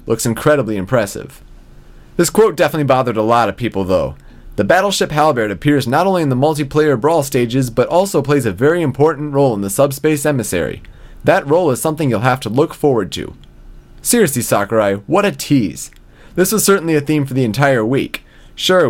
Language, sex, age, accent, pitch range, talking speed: English, male, 30-49, American, 115-165 Hz, 185 wpm